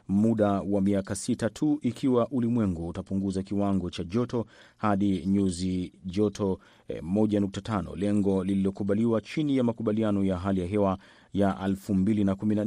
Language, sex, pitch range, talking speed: Swahili, male, 95-115 Hz, 135 wpm